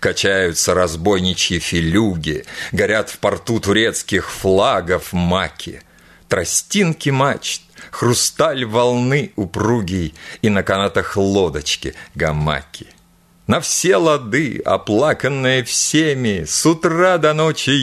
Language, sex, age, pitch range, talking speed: Russian, male, 50-69, 95-130 Hz, 95 wpm